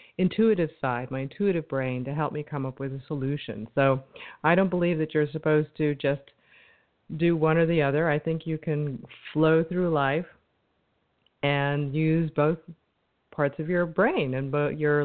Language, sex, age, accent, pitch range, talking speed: English, female, 40-59, American, 145-180 Hz, 175 wpm